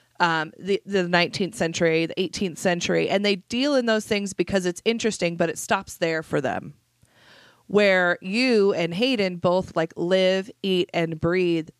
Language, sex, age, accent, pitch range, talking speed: English, female, 30-49, American, 160-195 Hz, 170 wpm